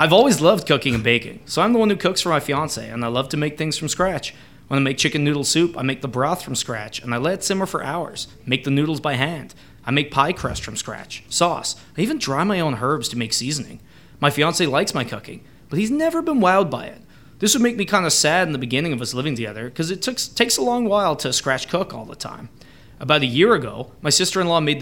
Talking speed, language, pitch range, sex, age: 260 wpm, English, 125-175 Hz, male, 20-39